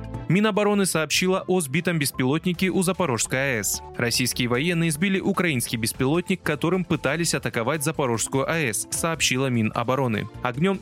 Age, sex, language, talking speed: 20-39, male, Russian, 115 wpm